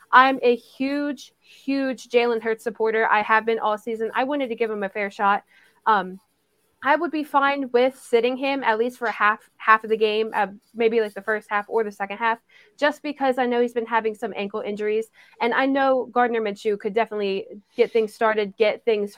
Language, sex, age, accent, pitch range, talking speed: English, female, 20-39, American, 210-245 Hz, 215 wpm